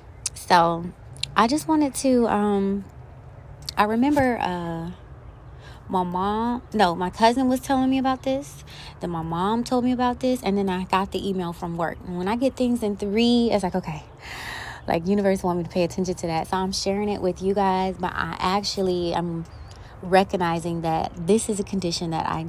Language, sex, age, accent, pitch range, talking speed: English, female, 20-39, American, 170-200 Hz, 190 wpm